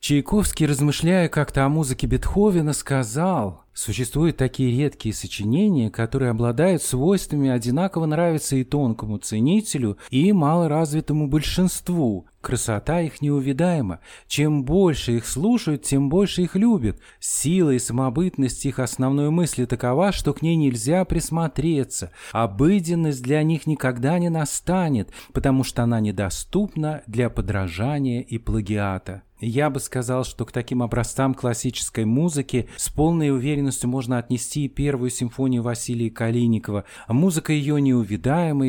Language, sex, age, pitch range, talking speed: Russian, male, 40-59, 115-155 Hz, 125 wpm